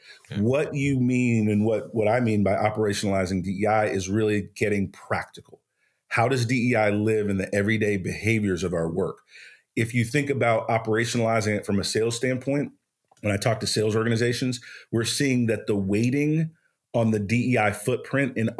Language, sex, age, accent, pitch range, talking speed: English, male, 40-59, American, 105-125 Hz, 170 wpm